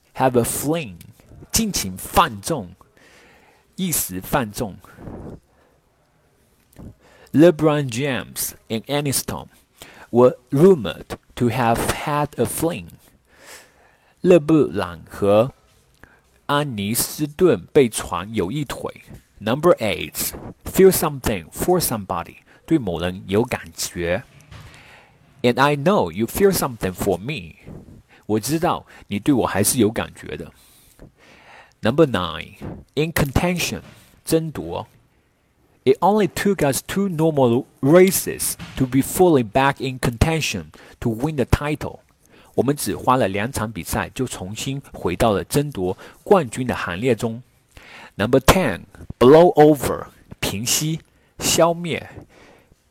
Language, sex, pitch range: Chinese, male, 110-150 Hz